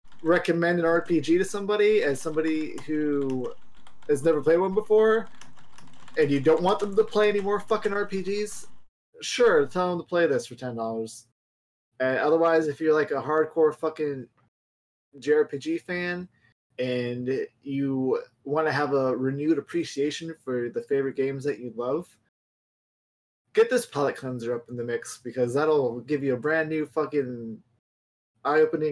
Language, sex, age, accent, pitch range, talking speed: English, male, 20-39, American, 130-195 Hz, 155 wpm